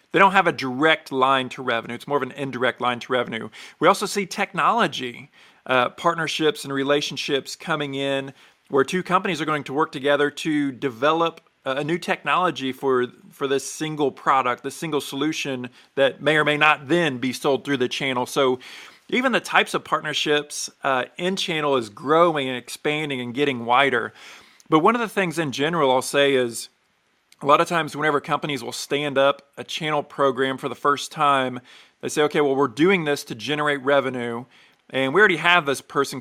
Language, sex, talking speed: English, male, 190 wpm